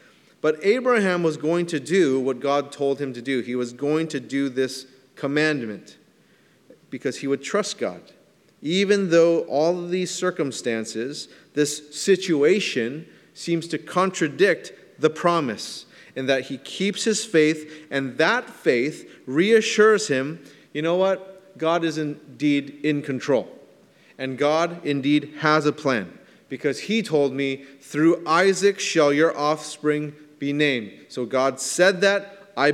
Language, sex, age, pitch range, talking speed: English, male, 30-49, 140-175 Hz, 145 wpm